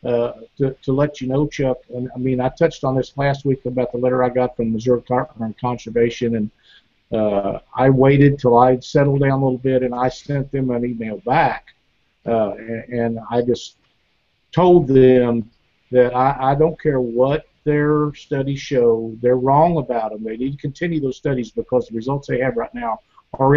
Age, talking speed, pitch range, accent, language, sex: 50-69, 200 wpm, 120-155 Hz, American, English, male